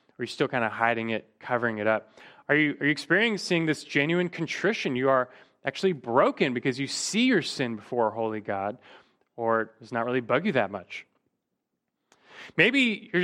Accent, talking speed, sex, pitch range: American, 185 wpm, male, 115-170 Hz